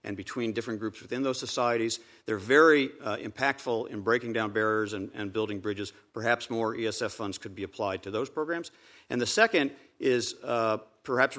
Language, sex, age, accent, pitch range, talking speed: English, male, 50-69, American, 105-125 Hz, 185 wpm